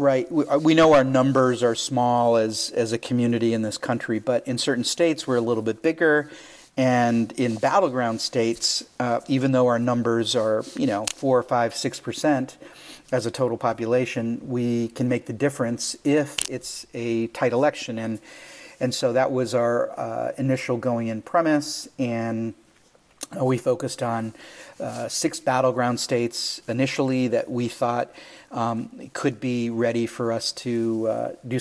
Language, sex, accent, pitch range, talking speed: English, male, American, 115-130 Hz, 165 wpm